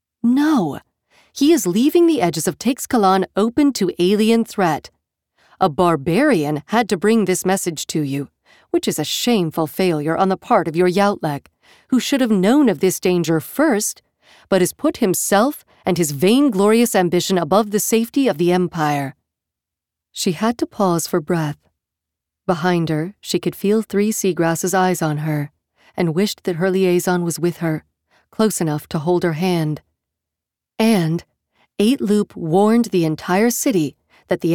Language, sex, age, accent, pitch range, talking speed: English, female, 40-59, American, 165-225 Hz, 160 wpm